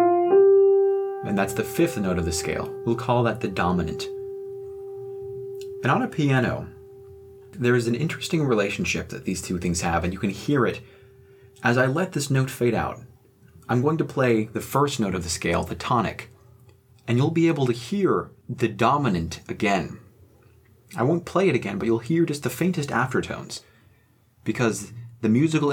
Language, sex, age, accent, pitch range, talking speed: English, male, 30-49, American, 105-130 Hz, 175 wpm